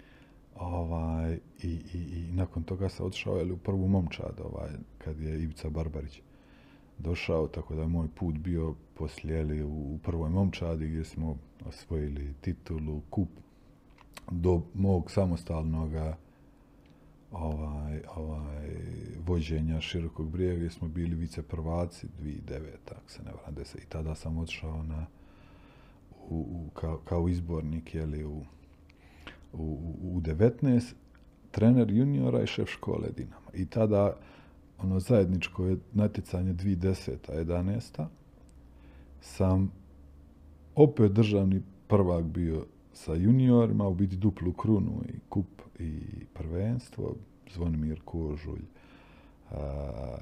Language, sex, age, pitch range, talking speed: Croatian, male, 40-59, 75-95 Hz, 115 wpm